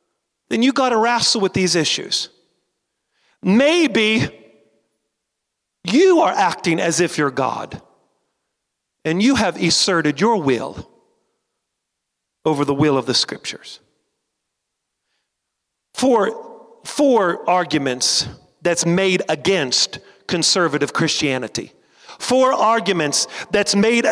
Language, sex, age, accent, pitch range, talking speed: English, male, 40-59, American, 185-250 Hz, 100 wpm